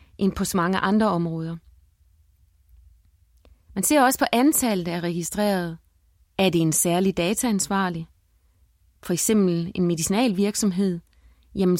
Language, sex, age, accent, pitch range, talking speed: Danish, female, 30-49, native, 175-220 Hz, 120 wpm